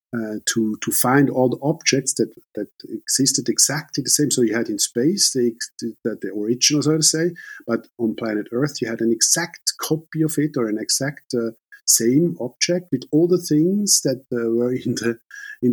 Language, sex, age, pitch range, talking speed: English, male, 50-69, 115-150 Hz, 195 wpm